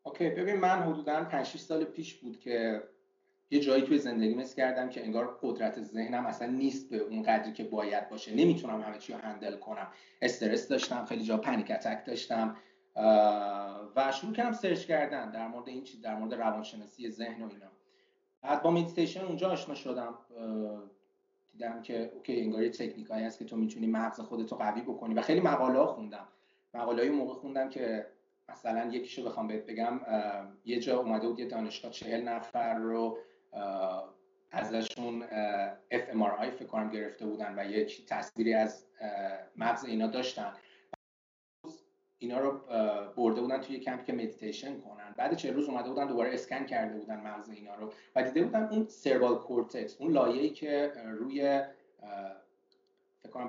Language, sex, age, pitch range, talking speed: Persian, male, 30-49, 110-155 Hz, 160 wpm